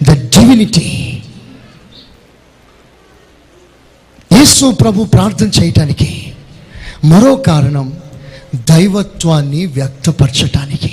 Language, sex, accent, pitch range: Telugu, male, native, 135-180 Hz